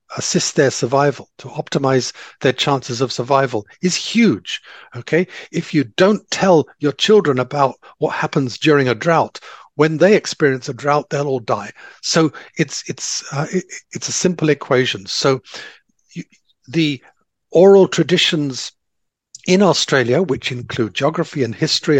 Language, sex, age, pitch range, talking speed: English, male, 50-69, 130-160 Hz, 145 wpm